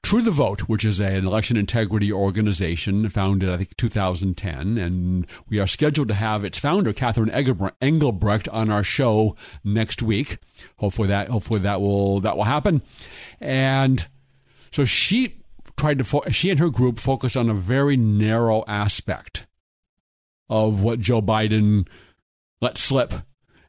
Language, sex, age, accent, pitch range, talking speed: English, male, 40-59, American, 100-125 Hz, 150 wpm